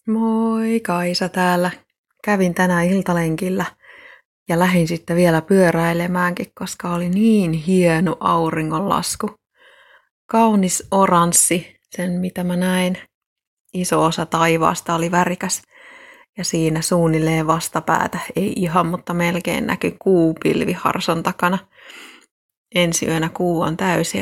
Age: 30-49